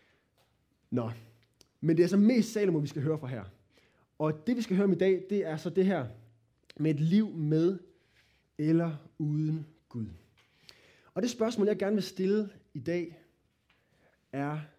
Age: 20-39